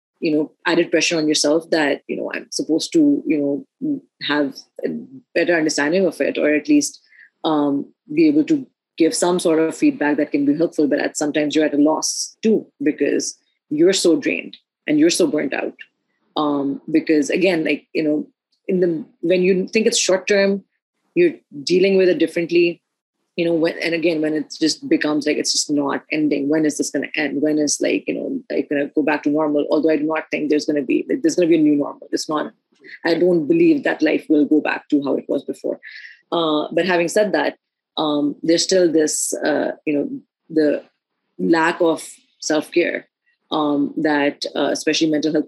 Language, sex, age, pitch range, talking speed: Urdu, female, 30-49, 150-185 Hz, 210 wpm